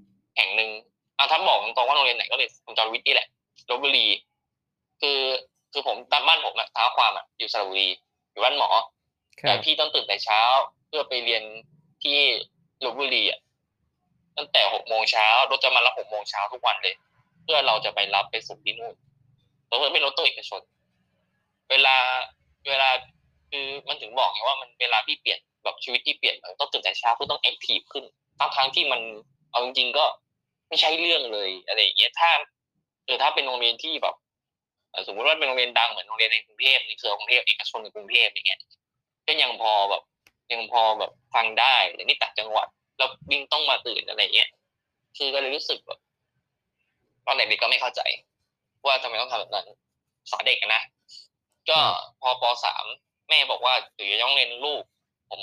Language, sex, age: Thai, male, 20-39